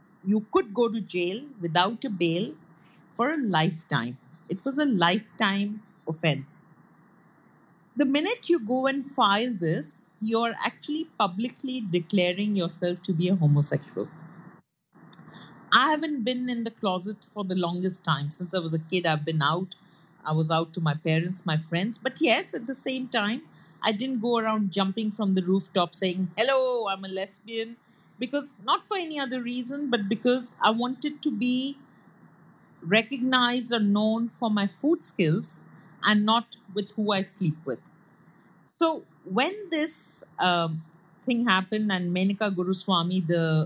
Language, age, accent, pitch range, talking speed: English, 50-69, Indian, 170-235 Hz, 155 wpm